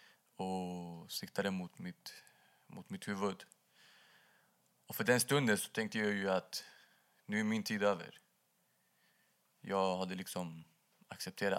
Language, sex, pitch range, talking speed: Swedish, male, 95-105 Hz, 130 wpm